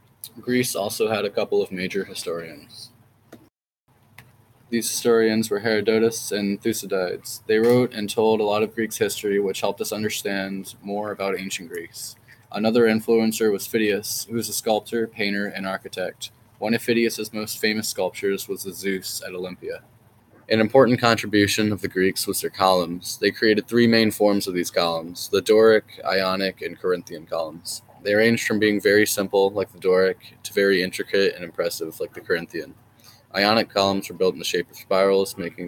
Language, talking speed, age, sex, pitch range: English, 175 wpm, 20-39, male, 95-115 Hz